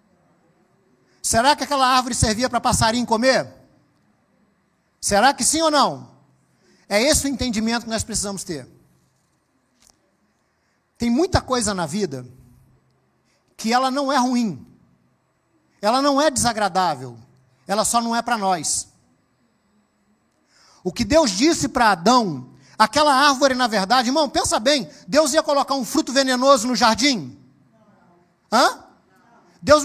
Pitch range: 220-285 Hz